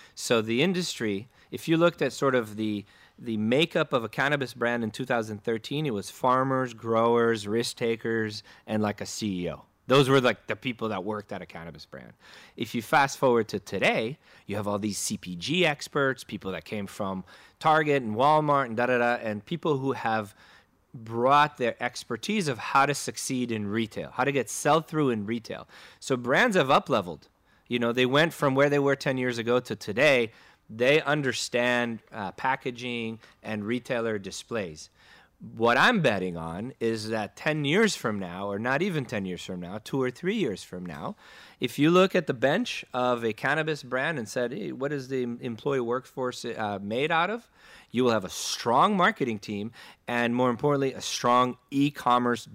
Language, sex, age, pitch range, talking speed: English, male, 30-49, 110-135 Hz, 185 wpm